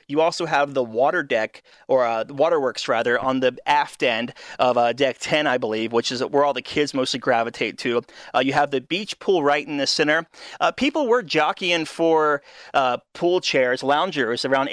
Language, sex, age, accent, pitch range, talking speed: English, male, 30-49, American, 135-175 Hz, 205 wpm